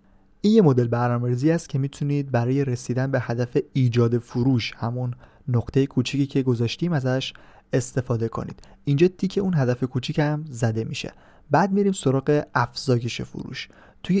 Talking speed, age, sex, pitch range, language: 145 wpm, 30-49, male, 115-140 Hz, Persian